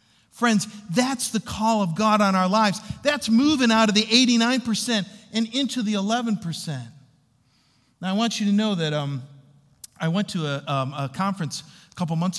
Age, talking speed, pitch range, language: 40-59, 180 wpm, 170-230 Hz, English